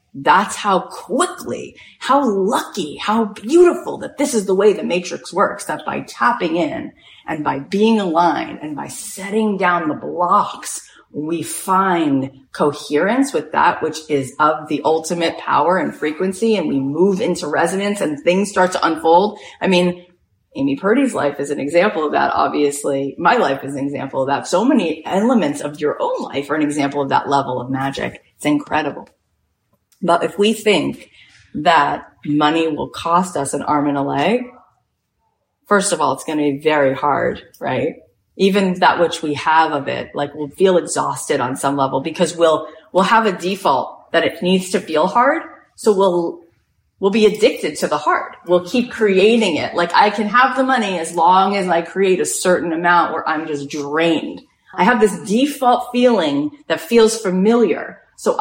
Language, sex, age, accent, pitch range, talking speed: English, female, 30-49, American, 150-215 Hz, 180 wpm